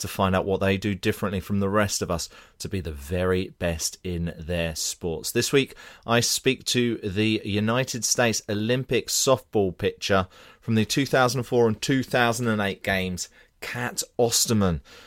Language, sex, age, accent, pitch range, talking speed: English, male, 30-49, British, 90-110 Hz, 155 wpm